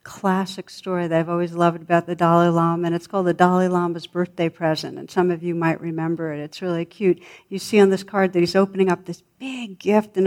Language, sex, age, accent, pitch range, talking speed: English, female, 60-79, American, 170-200 Hz, 240 wpm